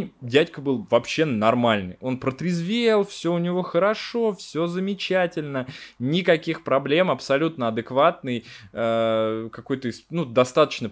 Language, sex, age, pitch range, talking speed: Russian, male, 20-39, 115-160 Hz, 100 wpm